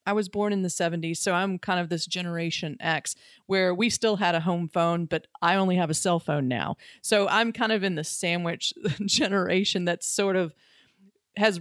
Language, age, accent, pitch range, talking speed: English, 40-59, American, 175-230 Hz, 205 wpm